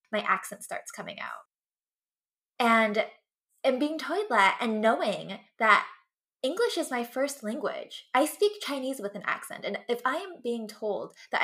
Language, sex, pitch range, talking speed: English, female, 205-265 Hz, 165 wpm